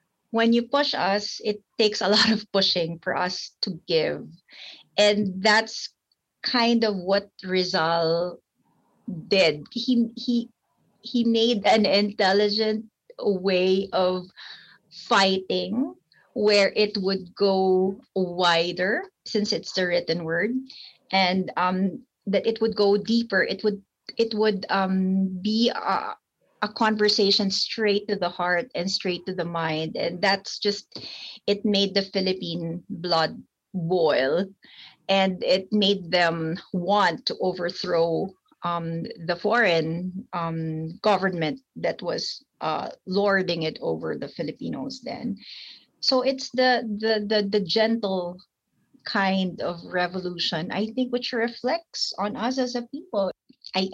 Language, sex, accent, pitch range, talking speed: Filipino, female, native, 180-220 Hz, 130 wpm